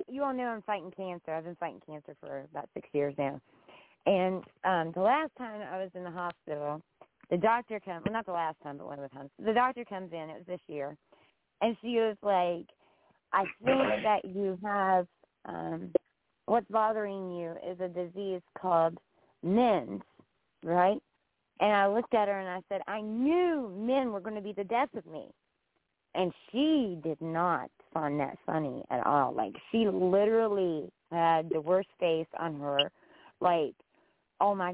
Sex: female